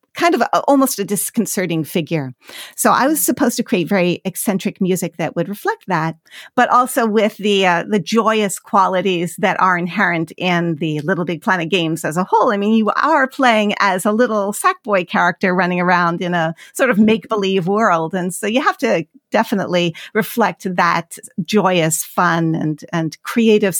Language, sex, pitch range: English, female, 180-230 Hz